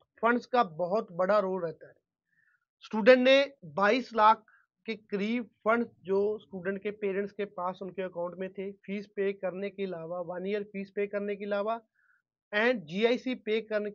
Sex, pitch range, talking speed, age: male, 185-215 Hz, 170 wpm, 30-49